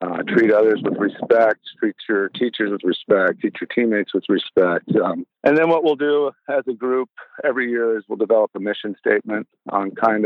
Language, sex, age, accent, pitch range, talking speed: English, male, 50-69, American, 110-130 Hz, 200 wpm